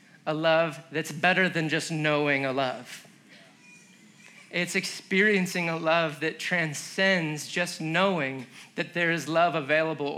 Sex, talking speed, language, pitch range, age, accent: male, 130 wpm, English, 180-245 Hz, 30-49, American